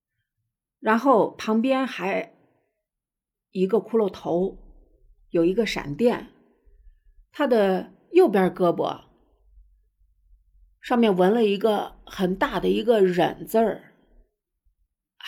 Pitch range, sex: 175-250 Hz, female